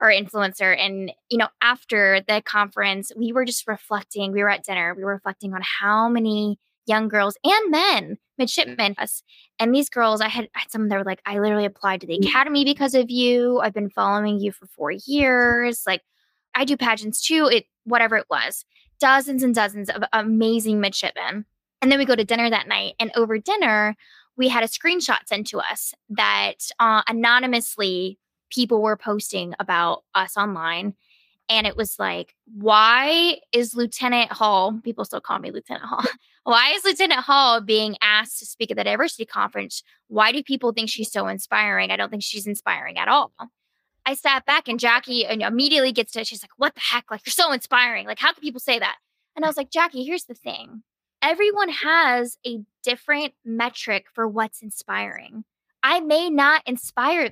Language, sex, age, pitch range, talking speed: English, female, 10-29, 210-255 Hz, 190 wpm